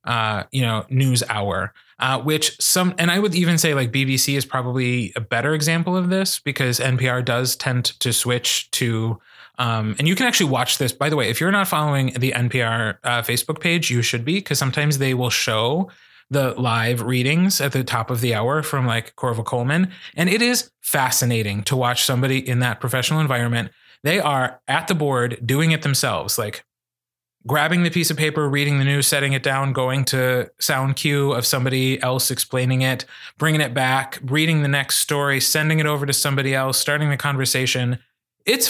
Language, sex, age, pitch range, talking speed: English, male, 30-49, 125-145 Hz, 195 wpm